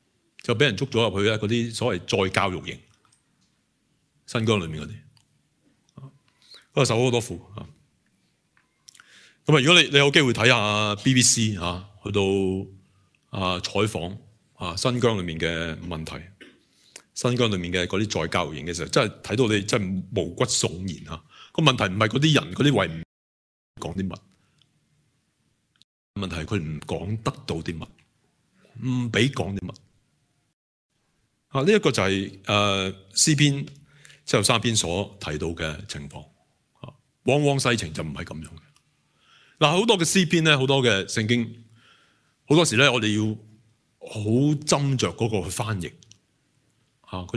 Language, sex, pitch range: Chinese, male, 95-130 Hz